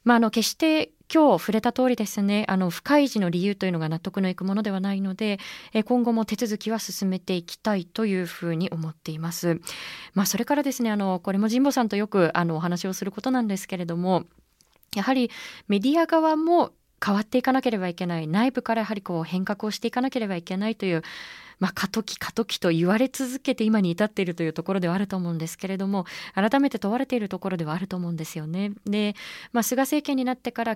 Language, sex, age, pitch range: Japanese, female, 20-39, 185-250 Hz